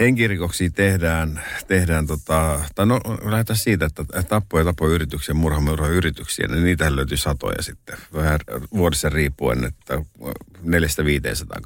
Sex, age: male, 50-69